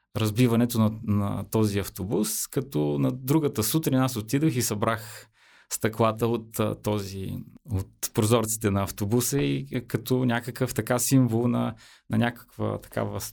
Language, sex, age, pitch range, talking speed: Bulgarian, male, 30-49, 105-125 Hz, 130 wpm